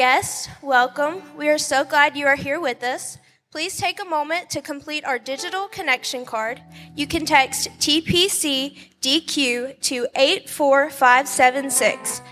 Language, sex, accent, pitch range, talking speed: English, female, American, 255-300 Hz, 130 wpm